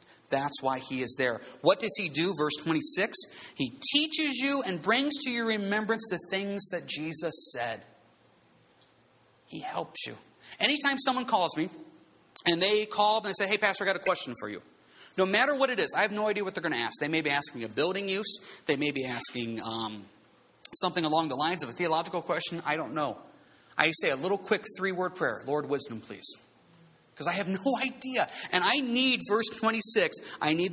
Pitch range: 130-200 Hz